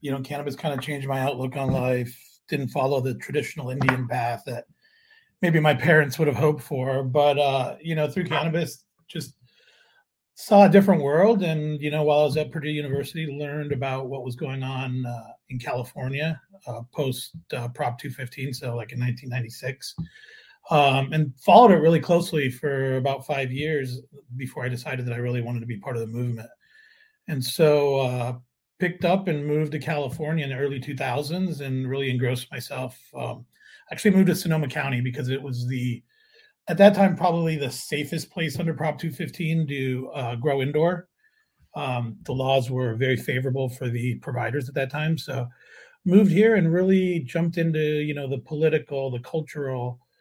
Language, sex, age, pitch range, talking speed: English, male, 40-59, 130-160 Hz, 180 wpm